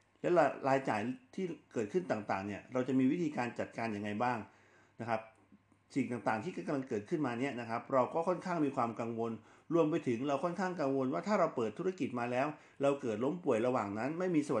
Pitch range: 110-140 Hz